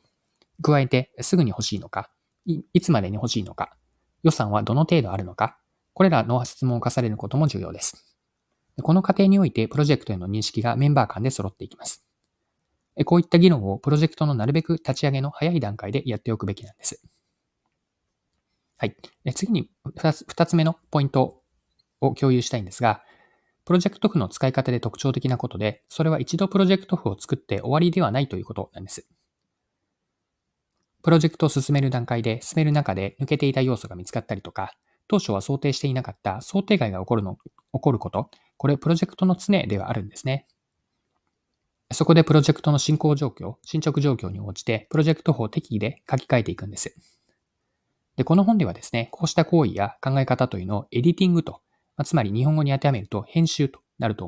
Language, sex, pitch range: Japanese, male, 110-160 Hz